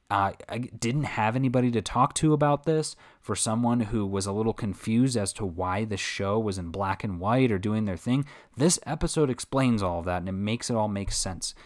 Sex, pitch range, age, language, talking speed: male, 100-130 Hz, 20-39, English, 225 wpm